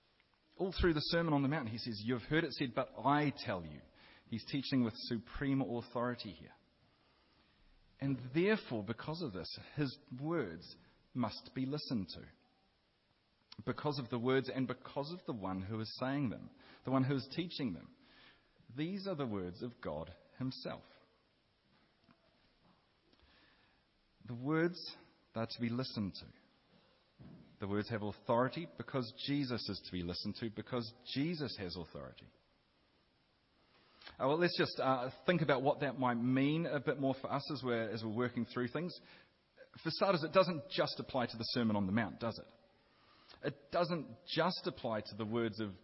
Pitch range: 110-145 Hz